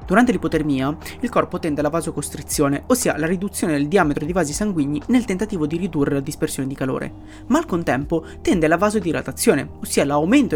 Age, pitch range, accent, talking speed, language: 20-39, 150-210 Hz, native, 175 wpm, Italian